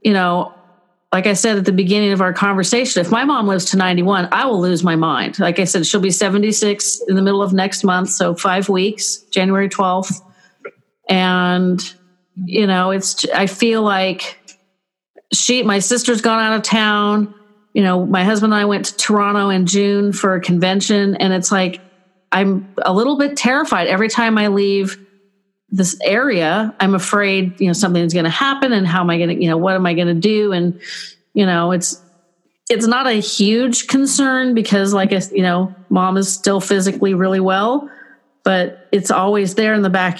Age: 40-59